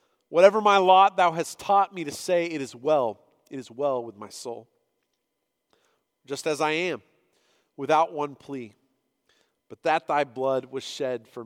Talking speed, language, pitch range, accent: 170 wpm, English, 155-215 Hz, American